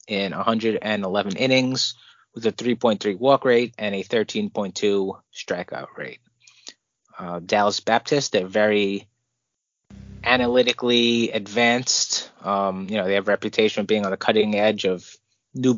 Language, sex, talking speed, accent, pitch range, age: English, male, 135 wpm, American, 100-120 Hz, 20-39